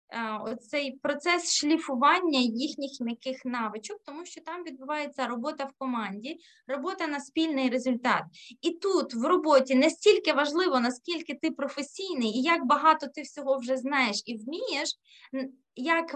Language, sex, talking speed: Ukrainian, female, 135 wpm